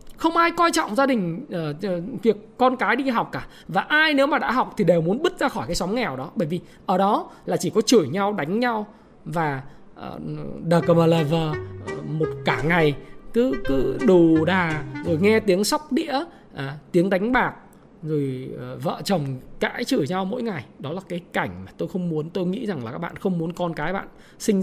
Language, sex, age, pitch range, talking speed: Vietnamese, male, 20-39, 165-235 Hz, 215 wpm